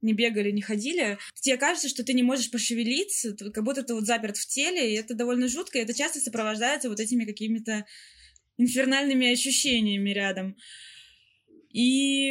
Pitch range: 225-265 Hz